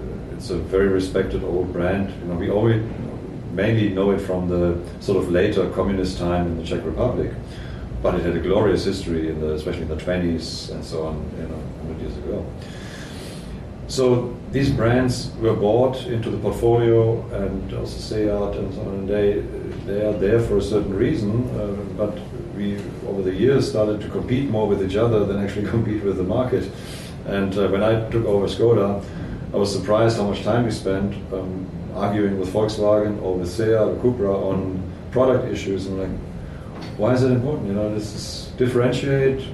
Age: 40-59